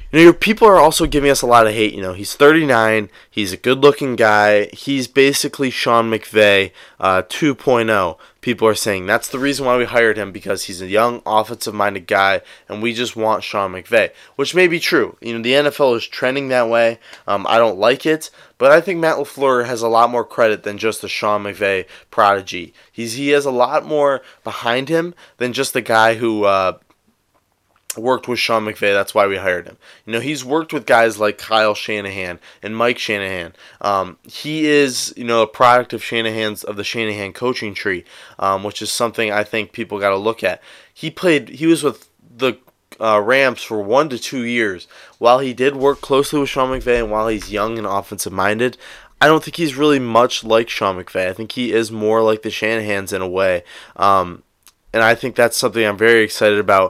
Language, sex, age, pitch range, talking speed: English, male, 20-39, 105-135 Hz, 210 wpm